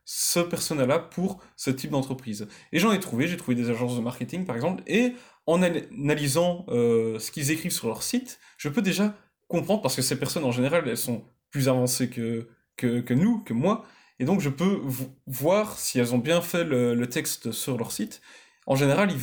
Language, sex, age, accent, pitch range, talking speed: French, male, 20-39, French, 125-175 Hz, 210 wpm